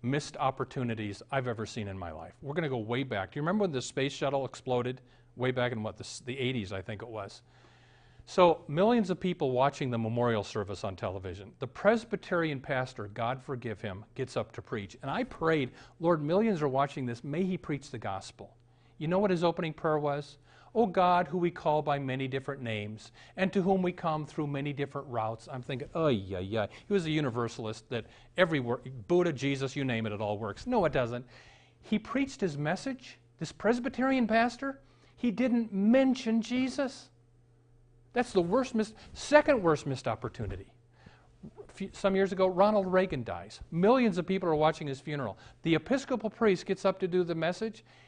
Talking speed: 195 wpm